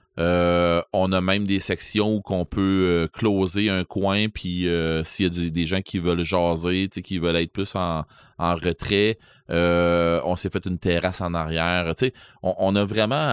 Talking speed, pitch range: 195 wpm, 85-100 Hz